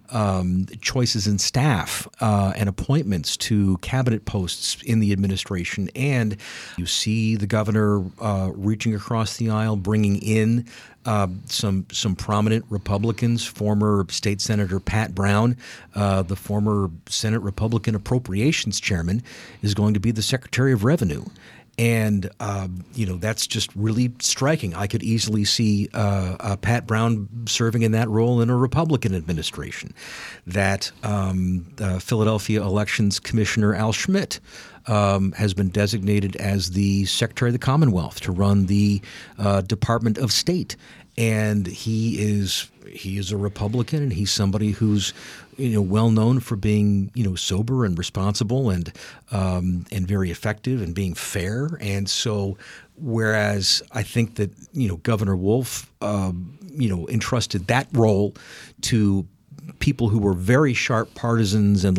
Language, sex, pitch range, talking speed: English, male, 100-115 Hz, 150 wpm